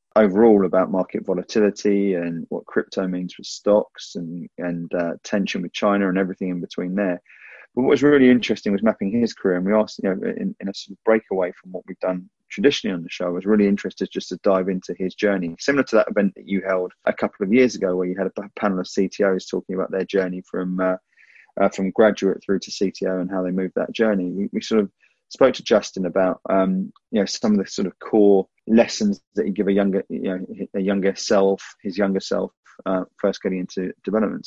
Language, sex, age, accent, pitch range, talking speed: English, male, 20-39, British, 95-105 Hz, 230 wpm